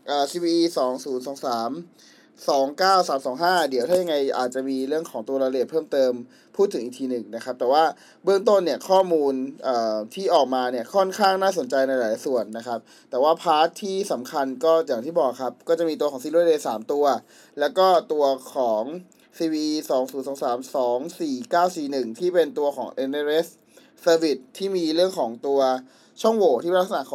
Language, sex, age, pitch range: Thai, male, 20-39, 135-180 Hz